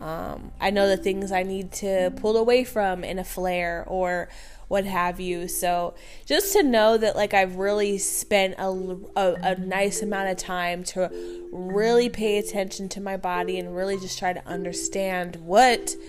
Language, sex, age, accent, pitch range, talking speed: English, female, 20-39, American, 185-230 Hz, 175 wpm